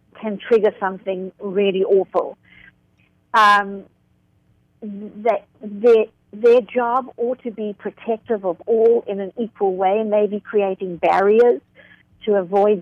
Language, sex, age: English, female, 60-79